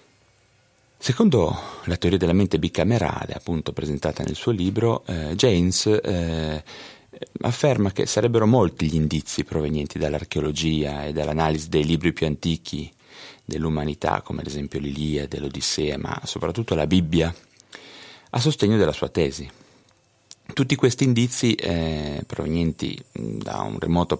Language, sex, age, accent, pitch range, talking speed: Italian, male, 30-49, native, 75-105 Hz, 125 wpm